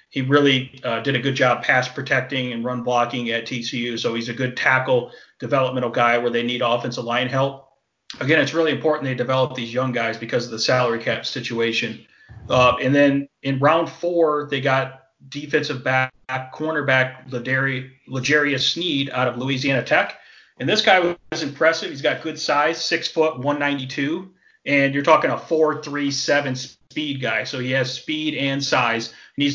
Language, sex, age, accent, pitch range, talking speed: English, male, 30-49, American, 125-145 Hz, 175 wpm